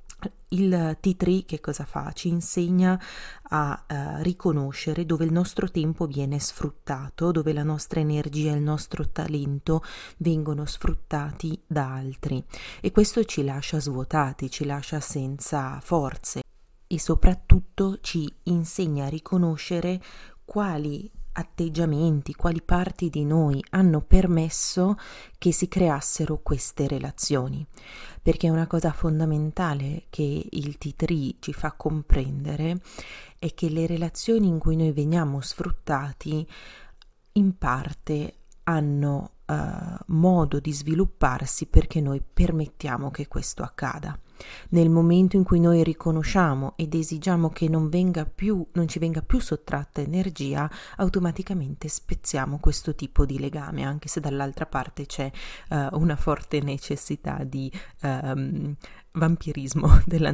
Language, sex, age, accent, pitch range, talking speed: Italian, female, 30-49, native, 145-175 Hz, 125 wpm